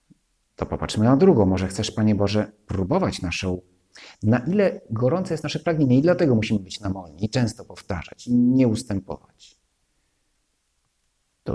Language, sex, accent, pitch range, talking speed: Polish, male, native, 90-110 Hz, 145 wpm